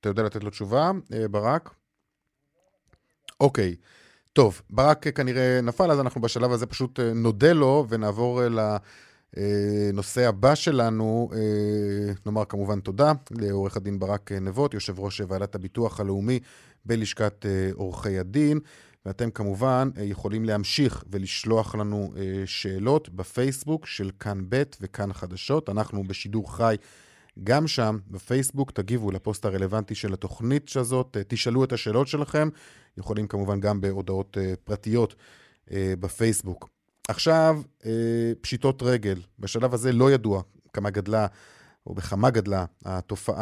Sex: male